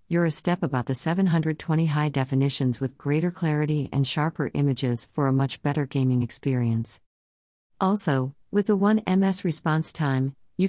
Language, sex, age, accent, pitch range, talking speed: English, female, 50-69, American, 130-160 Hz, 150 wpm